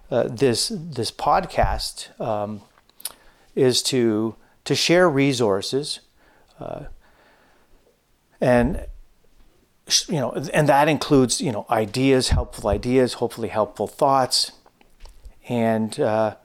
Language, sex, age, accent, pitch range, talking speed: English, male, 40-59, American, 105-135 Hz, 95 wpm